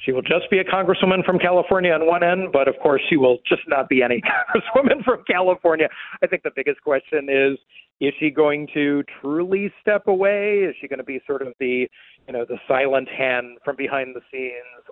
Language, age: English, 40-59